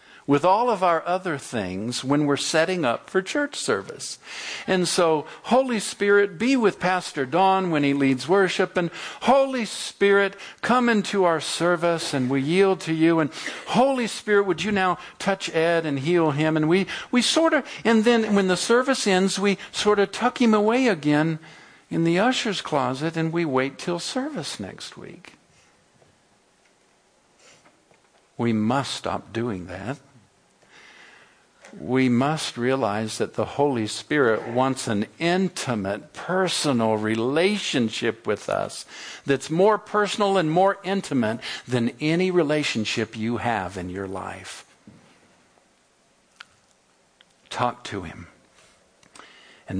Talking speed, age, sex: 135 wpm, 50-69, male